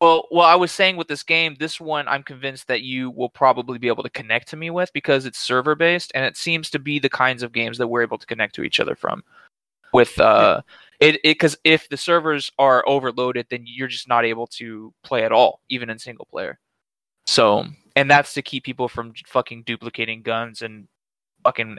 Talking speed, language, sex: 220 wpm, English, male